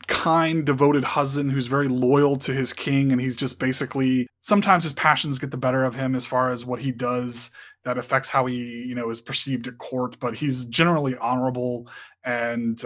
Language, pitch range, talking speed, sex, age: English, 125-150 Hz, 195 wpm, male, 20-39